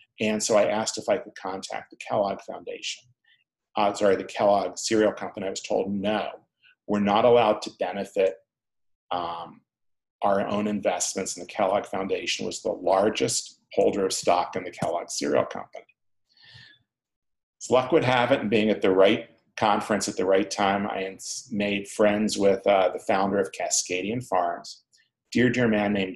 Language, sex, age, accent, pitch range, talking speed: English, male, 40-59, American, 100-125 Hz, 170 wpm